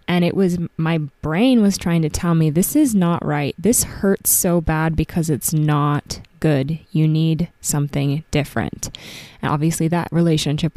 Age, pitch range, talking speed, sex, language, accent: 20-39, 150-175 Hz, 165 wpm, female, English, American